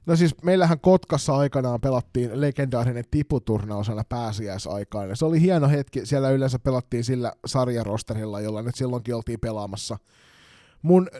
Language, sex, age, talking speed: Finnish, male, 20-39, 130 wpm